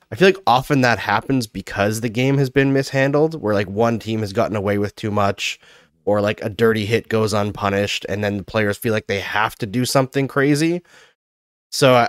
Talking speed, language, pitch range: 210 wpm, English, 105-130 Hz